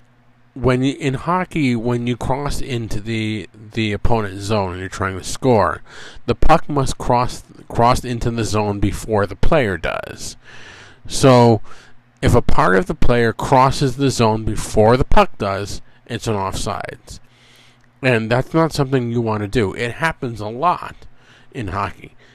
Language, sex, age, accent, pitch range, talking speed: English, male, 50-69, American, 110-135 Hz, 160 wpm